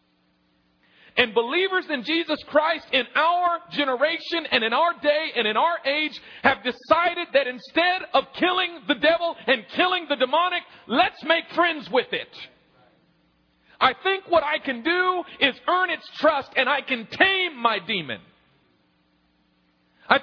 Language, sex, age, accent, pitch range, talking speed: English, male, 40-59, American, 215-335 Hz, 150 wpm